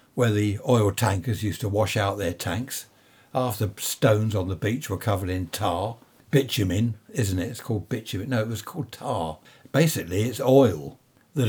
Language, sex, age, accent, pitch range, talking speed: English, male, 60-79, British, 100-130 Hz, 180 wpm